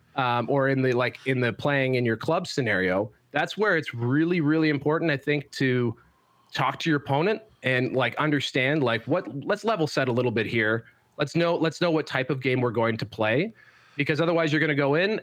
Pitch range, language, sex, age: 130-160 Hz, English, male, 30-49